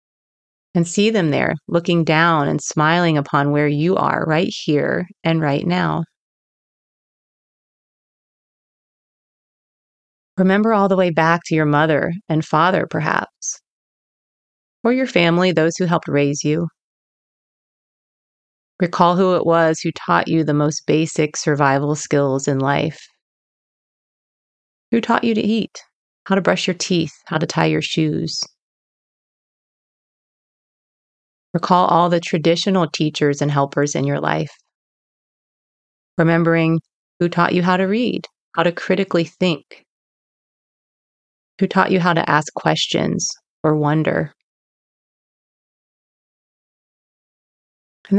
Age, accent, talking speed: 30-49, American, 120 wpm